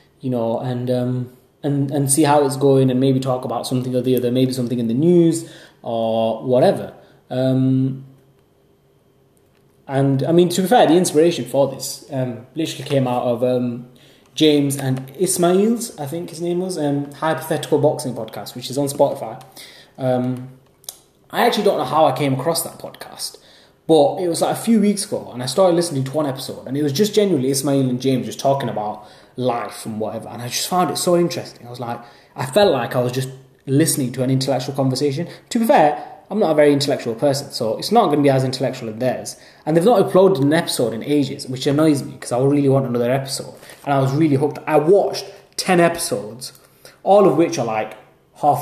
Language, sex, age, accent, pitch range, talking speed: English, male, 20-39, British, 130-160 Hz, 210 wpm